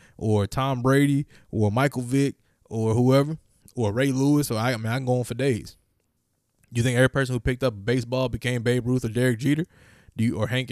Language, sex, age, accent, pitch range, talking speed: English, male, 20-39, American, 105-130 Hz, 225 wpm